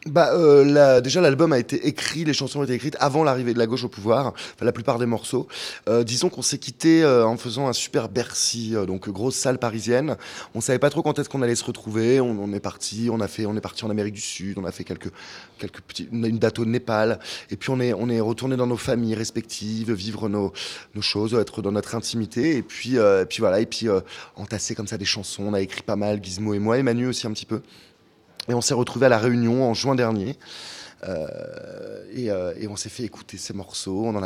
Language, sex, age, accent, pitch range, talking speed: French, male, 20-39, French, 105-125 Hz, 250 wpm